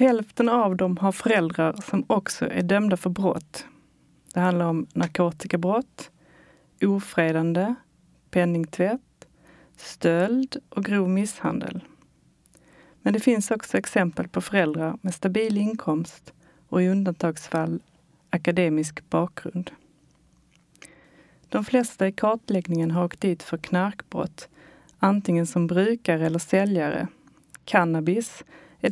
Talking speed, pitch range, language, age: 110 wpm, 165-200 Hz, Swedish, 30-49